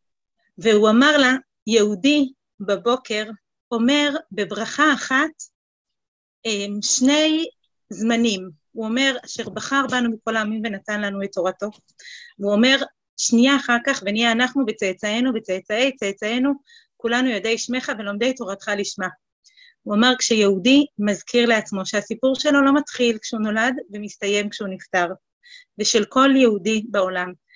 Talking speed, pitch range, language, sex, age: 120 wpm, 205-260 Hz, Hebrew, female, 30-49